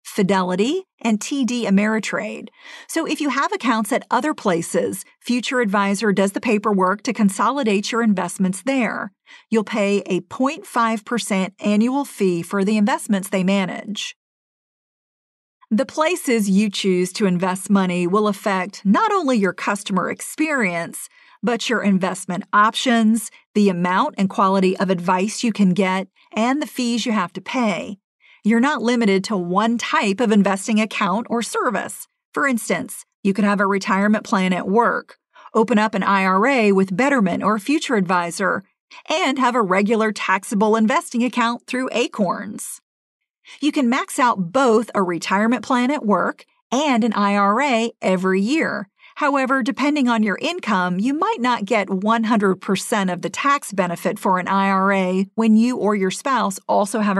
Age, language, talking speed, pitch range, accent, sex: 50-69, English, 150 wpm, 195-245 Hz, American, female